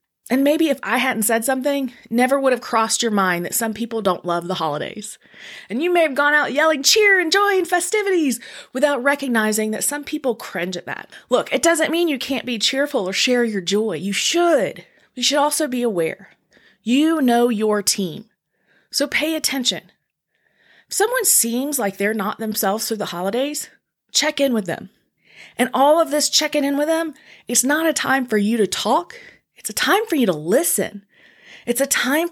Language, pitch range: English, 210-295 Hz